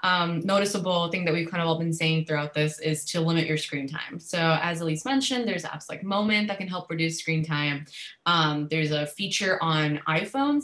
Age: 20-39